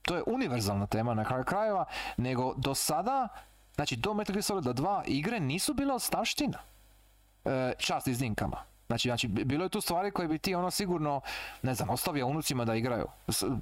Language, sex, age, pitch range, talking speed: Croatian, male, 30-49, 110-160 Hz, 175 wpm